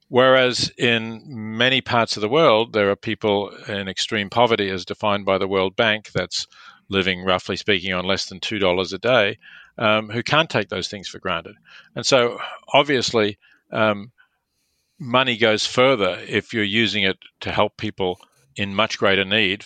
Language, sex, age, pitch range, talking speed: English, male, 40-59, 95-110 Hz, 170 wpm